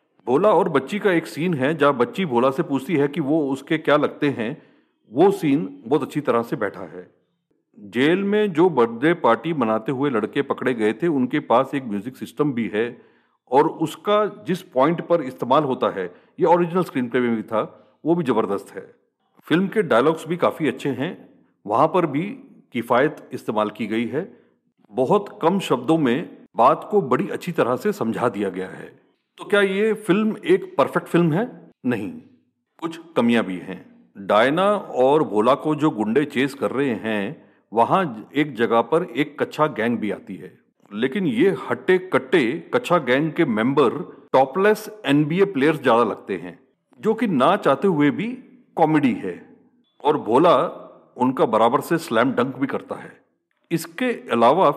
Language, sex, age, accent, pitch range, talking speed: Hindi, male, 40-59, native, 130-185 Hz, 175 wpm